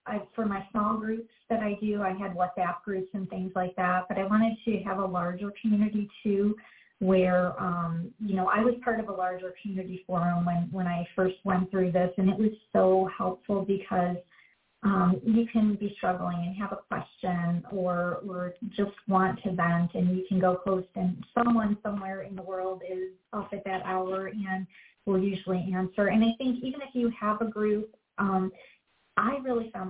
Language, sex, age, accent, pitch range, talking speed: English, female, 30-49, American, 185-210 Hz, 200 wpm